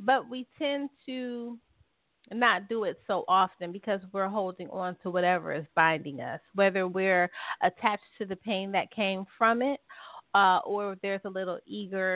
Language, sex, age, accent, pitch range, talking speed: English, female, 30-49, American, 180-215 Hz, 165 wpm